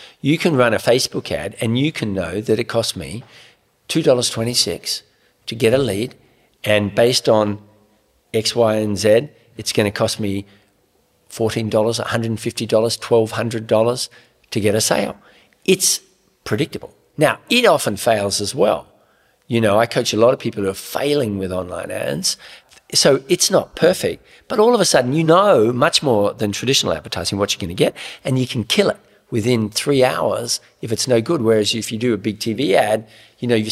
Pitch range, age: 100-120 Hz, 50-69